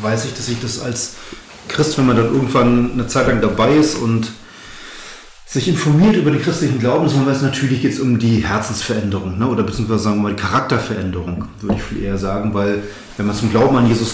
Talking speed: 210 wpm